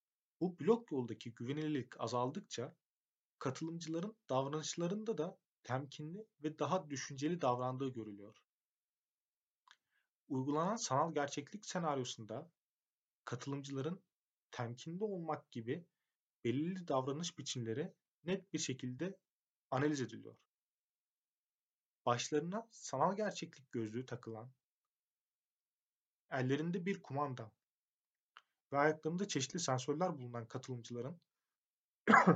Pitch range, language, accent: 125-170 Hz, Turkish, native